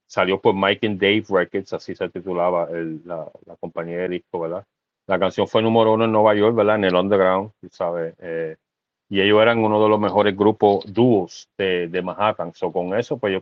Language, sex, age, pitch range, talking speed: Spanish, male, 30-49, 90-105 Hz, 210 wpm